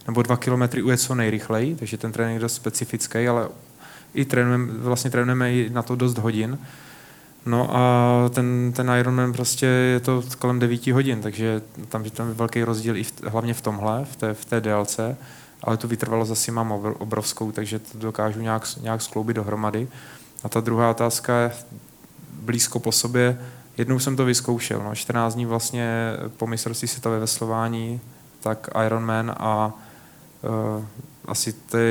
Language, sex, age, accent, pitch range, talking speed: Czech, male, 20-39, native, 110-125 Hz, 165 wpm